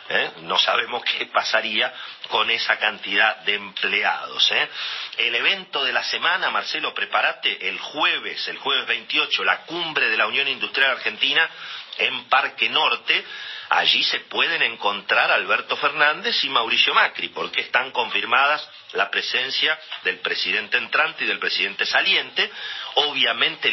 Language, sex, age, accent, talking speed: Spanish, male, 40-59, Argentinian, 140 wpm